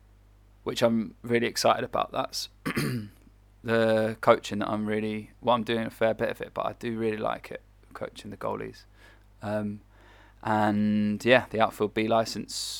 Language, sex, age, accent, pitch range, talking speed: English, male, 20-39, British, 105-115 Hz, 165 wpm